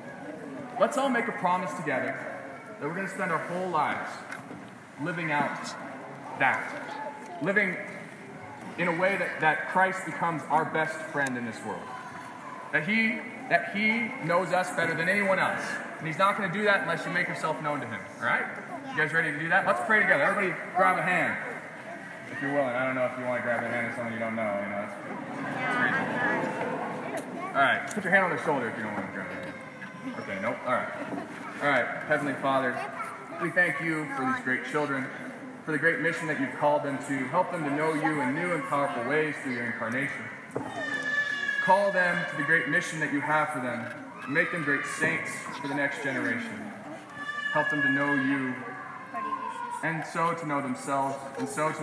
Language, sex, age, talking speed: English, male, 20-39, 200 wpm